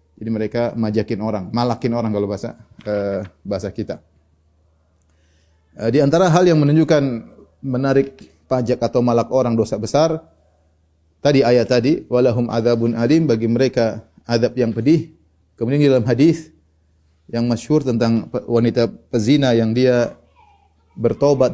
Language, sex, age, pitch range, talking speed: Indonesian, male, 30-49, 110-145 Hz, 125 wpm